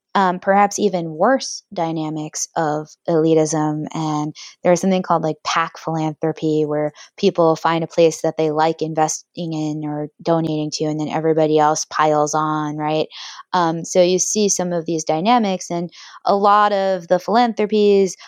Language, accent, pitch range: English, American, 160-200 Hz